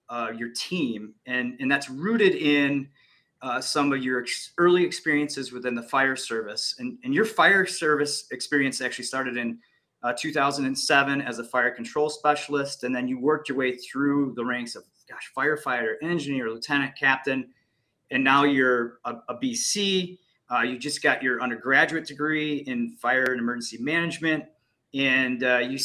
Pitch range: 125-155 Hz